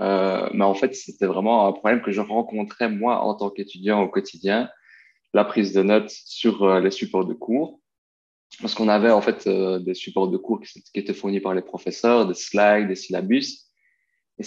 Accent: French